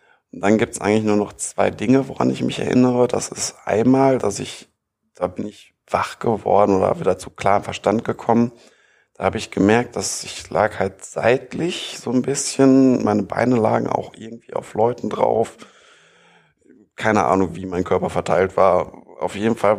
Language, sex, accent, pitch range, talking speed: German, male, German, 100-120 Hz, 175 wpm